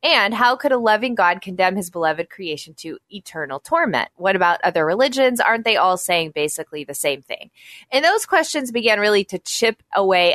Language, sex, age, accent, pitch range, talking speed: English, female, 20-39, American, 175-235 Hz, 190 wpm